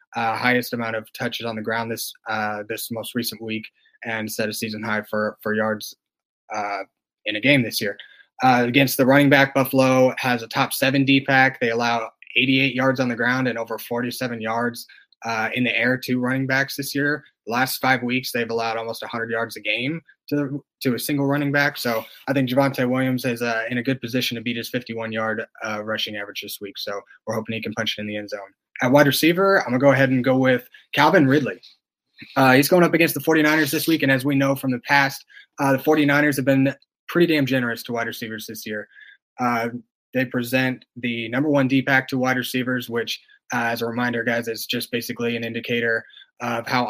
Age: 20-39